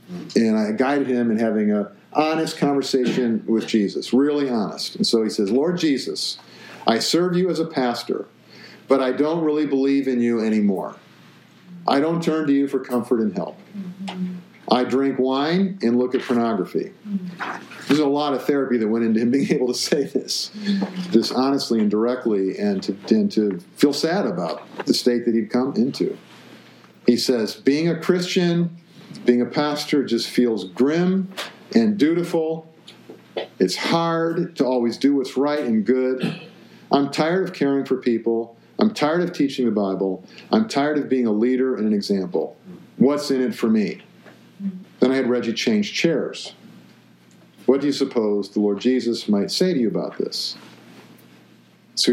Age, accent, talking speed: 50-69, American, 170 wpm